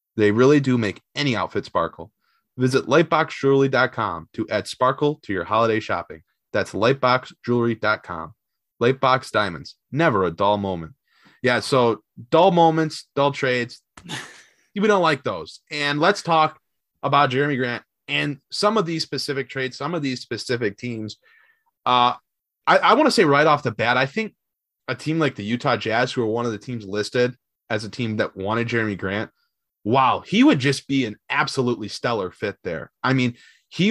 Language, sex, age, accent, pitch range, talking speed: English, male, 20-39, American, 115-145 Hz, 170 wpm